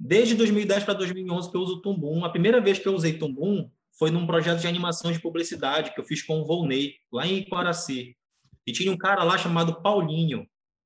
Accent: Brazilian